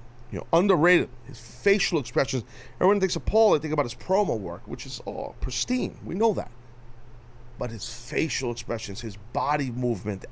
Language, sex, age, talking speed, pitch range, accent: English, male, 40-59, 175 wpm, 115-140 Hz, American